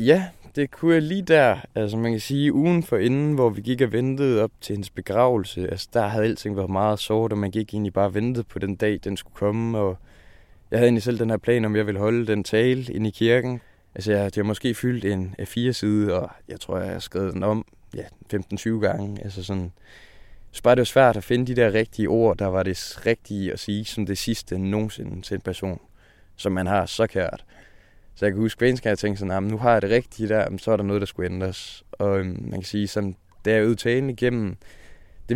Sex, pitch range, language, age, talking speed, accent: male, 95-115 Hz, Danish, 20-39, 240 wpm, native